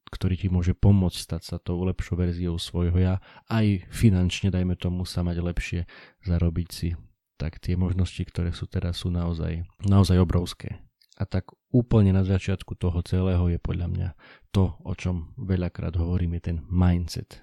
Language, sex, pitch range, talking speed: Slovak, male, 90-100 Hz, 165 wpm